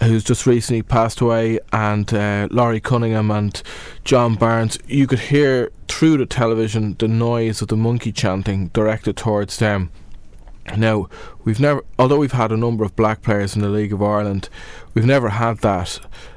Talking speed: 170 wpm